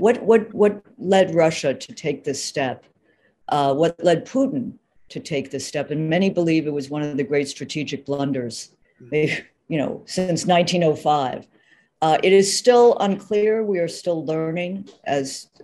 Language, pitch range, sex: English, 140-175 Hz, female